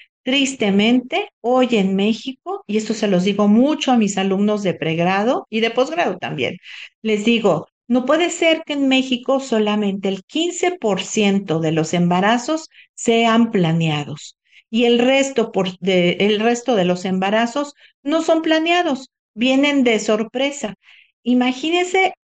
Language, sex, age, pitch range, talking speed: Spanish, female, 50-69, 195-270 Hz, 130 wpm